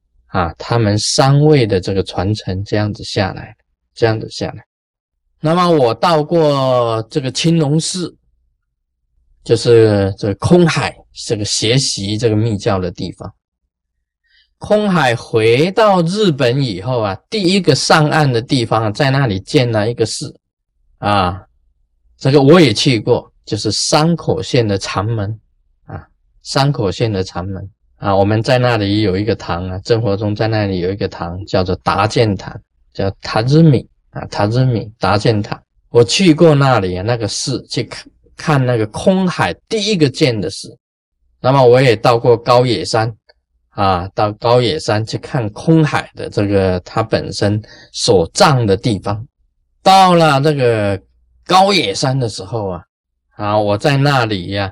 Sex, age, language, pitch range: male, 20-39, Chinese, 100-155 Hz